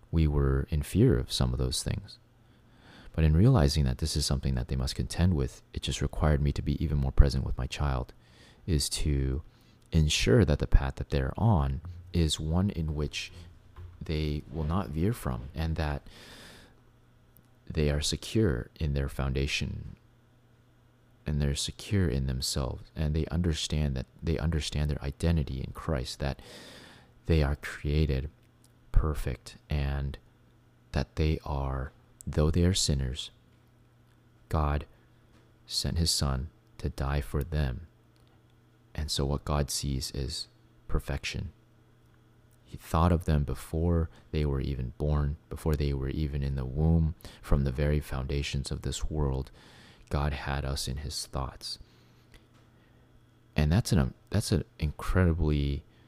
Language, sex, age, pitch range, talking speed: English, male, 30-49, 70-95 Hz, 145 wpm